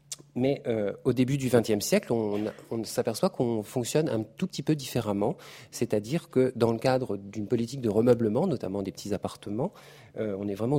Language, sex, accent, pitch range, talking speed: French, male, French, 100-130 Hz, 190 wpm